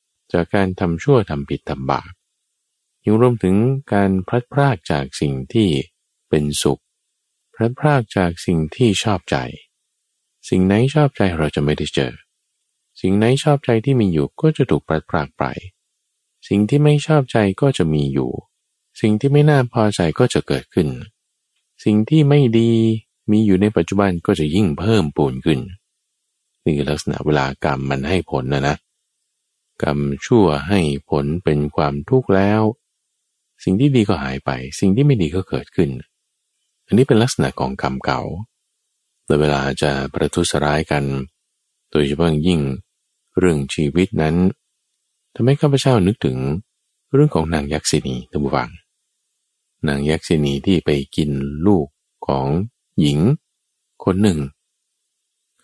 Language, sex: Thai, male